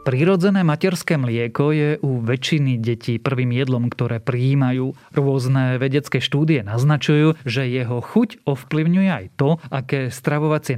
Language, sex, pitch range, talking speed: Slovak, male, 125-150 Hz, 130 wpm